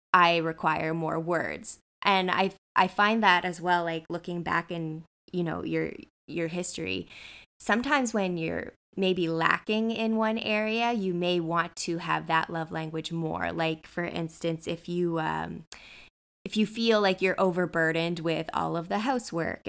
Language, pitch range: English, 165-190 Hz